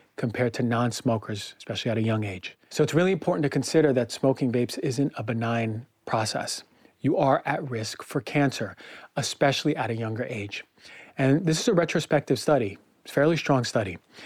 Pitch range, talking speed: 115-145 Hz, 180 wpm